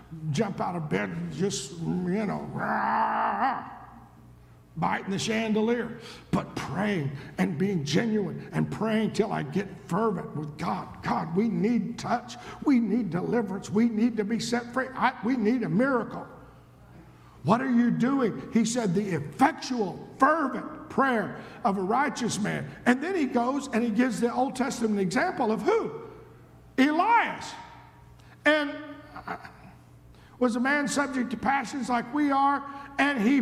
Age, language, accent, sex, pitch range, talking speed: 50-69, English, American, male, 160-245 Hz, 150 wpm